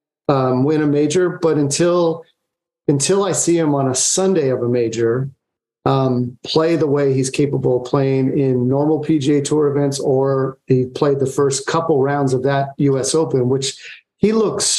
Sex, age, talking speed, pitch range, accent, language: male, 40-59, 175 wpm, 135-160 Hz, American, English